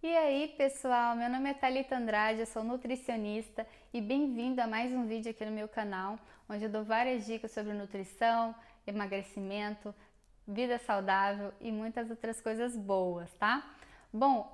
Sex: female